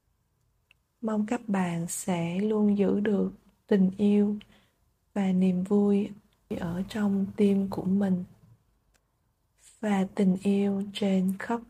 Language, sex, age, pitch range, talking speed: Vietnamese, female, 20-39, 180-205 Hz, 115 wpm